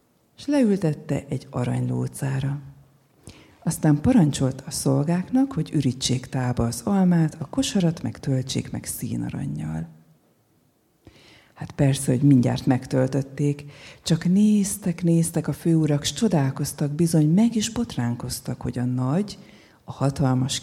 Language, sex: Hungarian, female